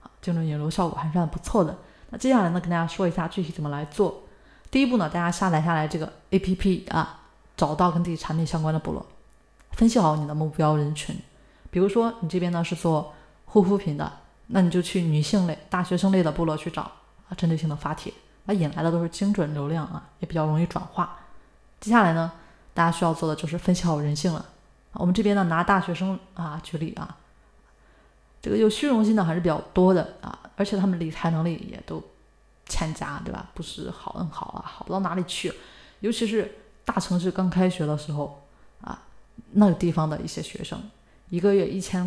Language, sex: Chinese, female